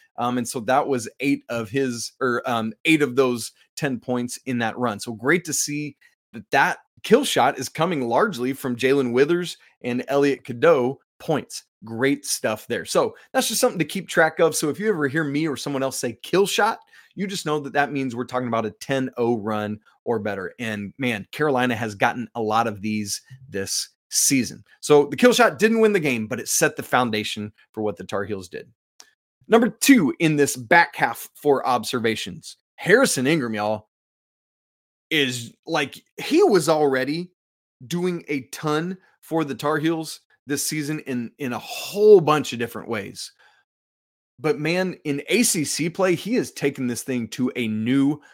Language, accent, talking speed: English, American, 185 wpm